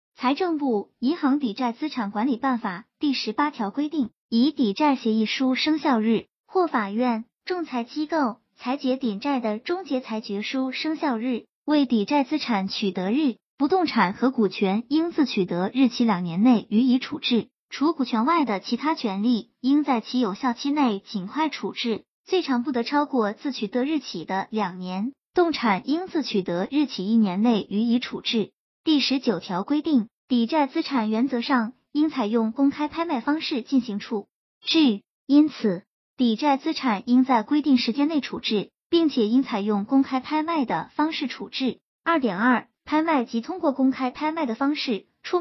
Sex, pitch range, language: male, 220-295 Hz, Chinese